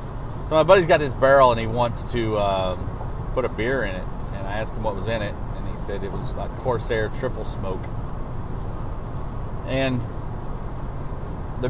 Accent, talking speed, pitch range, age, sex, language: American, 180 wpm, 105-130 Hz, 30-49, male, English